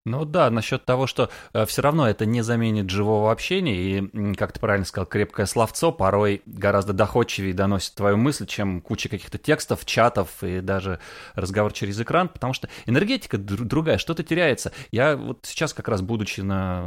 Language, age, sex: Russian, 30-49, male